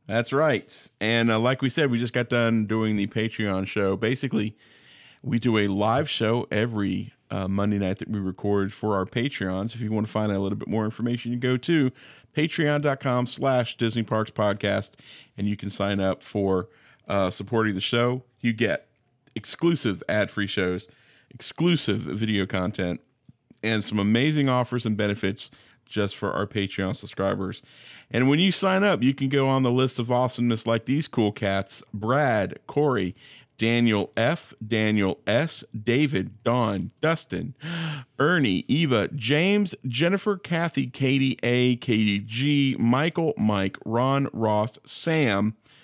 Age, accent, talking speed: 40-59, American, 155 wpm